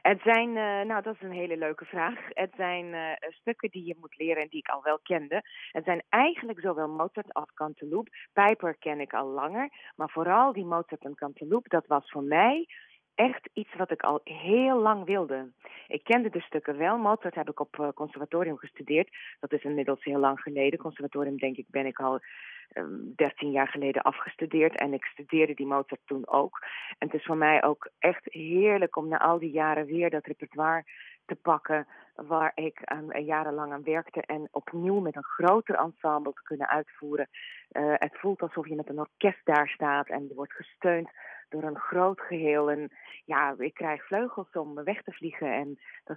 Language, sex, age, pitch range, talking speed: Dutch, female, 30-49, 145-180 Hz, 200 wpm